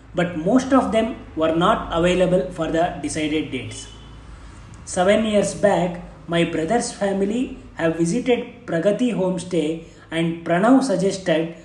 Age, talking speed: 20-39, 125 wpm